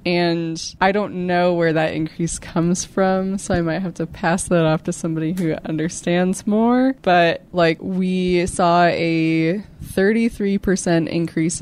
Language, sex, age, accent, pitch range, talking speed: English, female, 20-39, American, 155-185 Hz, 150 wpm